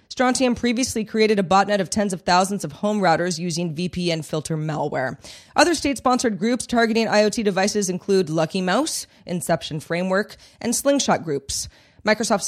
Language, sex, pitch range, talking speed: English, female, 170-225 Hz, 150 wpm